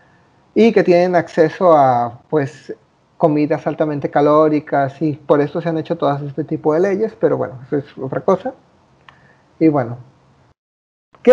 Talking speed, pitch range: 155 wpm, 160-225 Hz